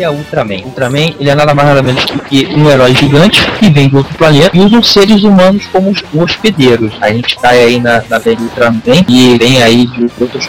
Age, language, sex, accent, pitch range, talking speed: 20-39, Portuguese, male, Brazilian, 125-150 Hz, 240 wpm